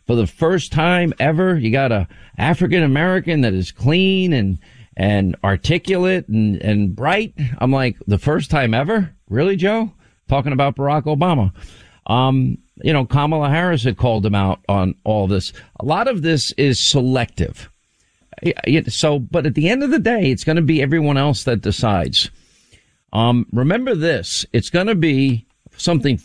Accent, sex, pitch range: American, male, 115-160 Hz